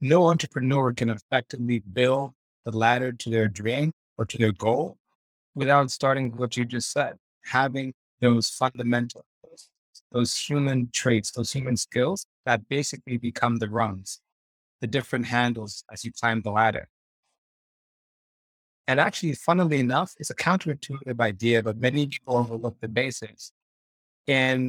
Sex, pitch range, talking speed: male, 115-140 Hz, 140 wpm